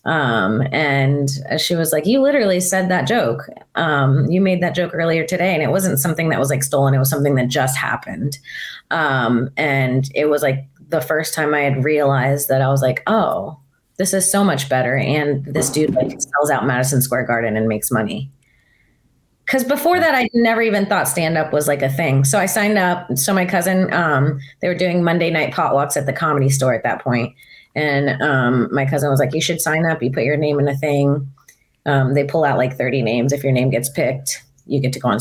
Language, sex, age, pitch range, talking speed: English, female, 30-49, 135-165 Hz, 225 wpm